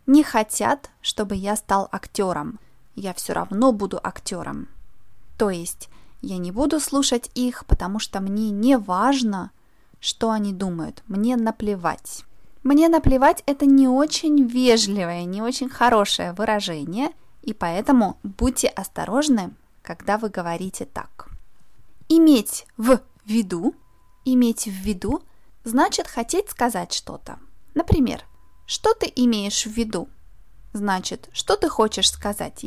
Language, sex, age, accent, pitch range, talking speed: Russian, female, 20-39, native, 200-260 Hz, 125 wpm